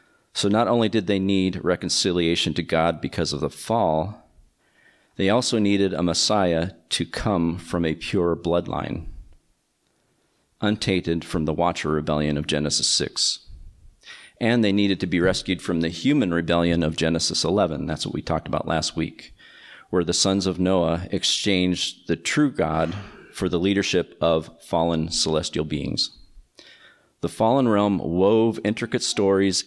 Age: 40-59